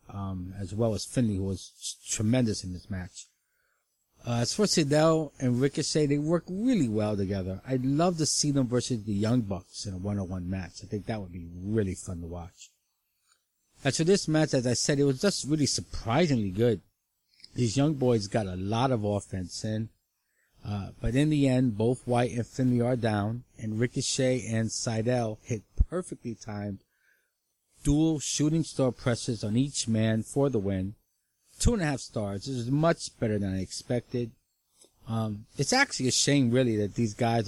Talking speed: 185 wpm